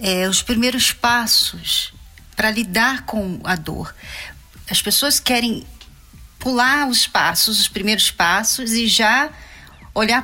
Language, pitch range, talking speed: Portuguese, 210-265 Hz, 115 wpm